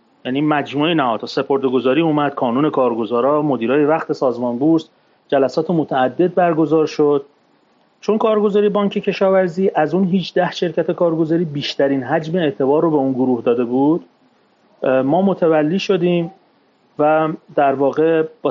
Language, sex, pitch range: Persian, male, 135-165 Hz